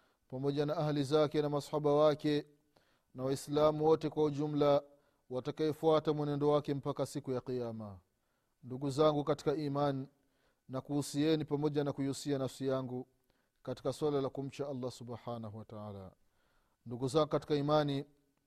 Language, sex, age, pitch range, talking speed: Swahili, male, 30-49, 135-155 Hz, 135 wpm